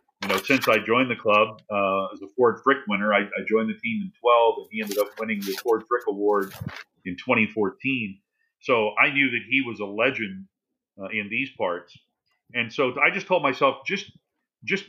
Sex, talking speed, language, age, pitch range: male, 205 wpm, English, 40-59, 105-135 Hz